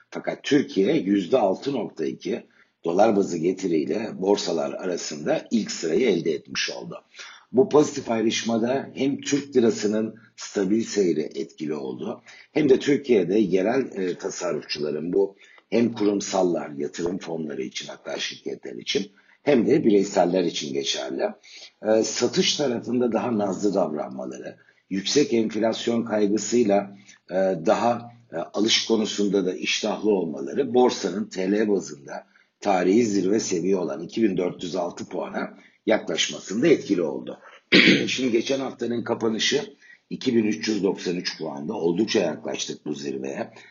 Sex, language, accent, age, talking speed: male, Turkish, native, 60-79, 110 wpm